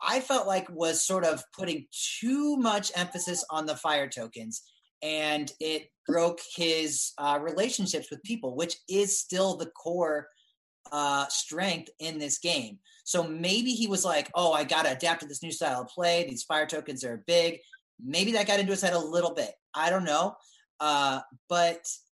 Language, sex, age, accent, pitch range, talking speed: English, male, 30-49, American, 150-200 Hz, 180 wpm